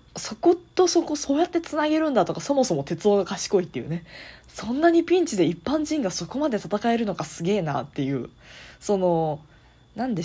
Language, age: Japanese, 20-39